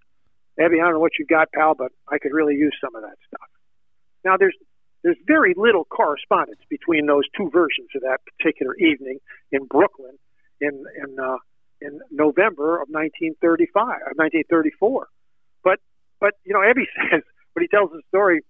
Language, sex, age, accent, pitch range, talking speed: English, male, 50-69, American, 145-200 Hz, 170 wpm